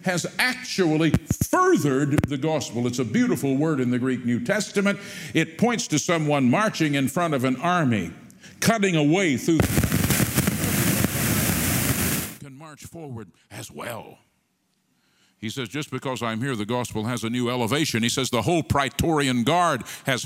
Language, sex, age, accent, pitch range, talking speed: English, male, 50-69, American, 115-150 Hz, 150 wpm